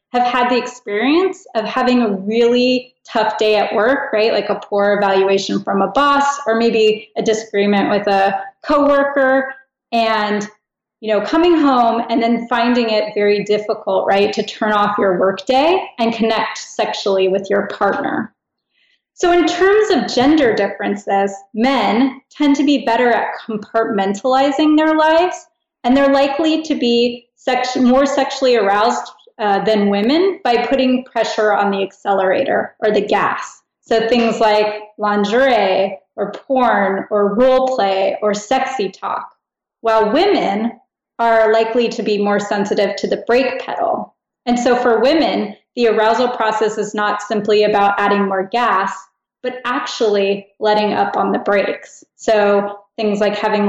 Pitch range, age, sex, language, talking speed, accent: 205-255 Hz, 20-39, female, English, 150 wpm, American